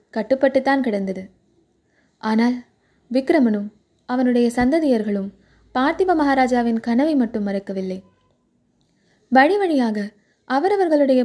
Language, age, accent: Tamil, 20-39, native